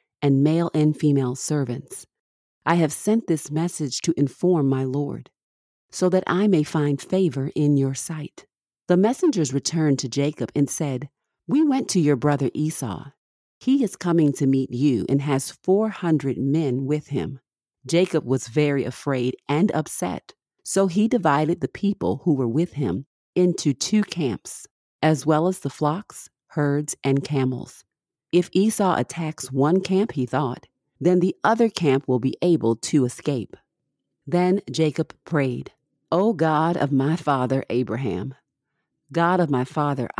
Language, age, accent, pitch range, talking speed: English, 40-59, American, 135-175 Hz, 155 wpm